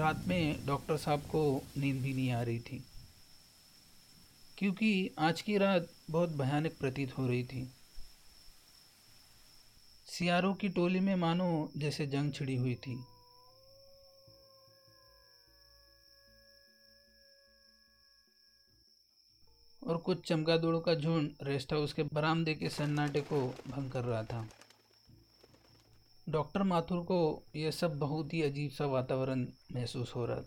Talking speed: 120 wpm